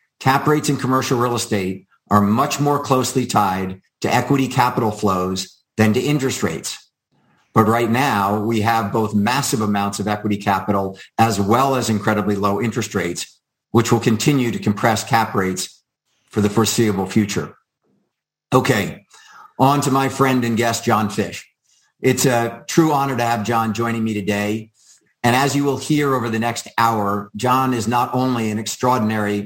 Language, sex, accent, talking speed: English, male, American, 165 wpm